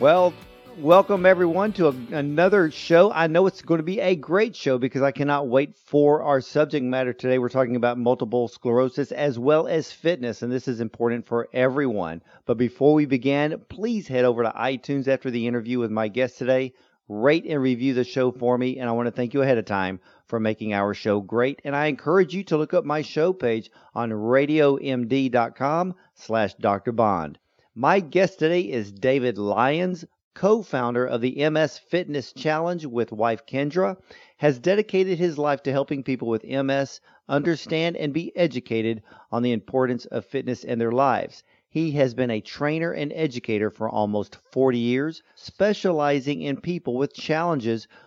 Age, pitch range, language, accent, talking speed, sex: 50-69, 120-155 Hz, English, American, 180 wpm, male